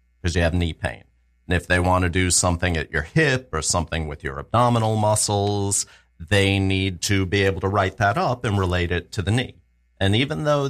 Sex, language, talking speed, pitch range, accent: male, English, 220 wpm, 80-115 Hz, American